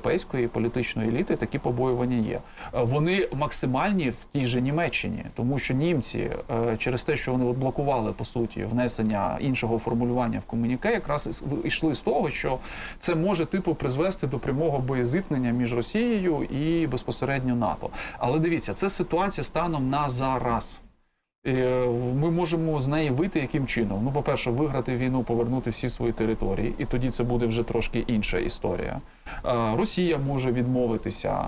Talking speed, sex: 145 wpm, male